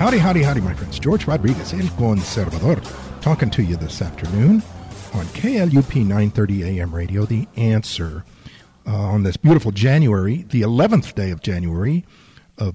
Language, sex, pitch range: English, male, 105-145 Hz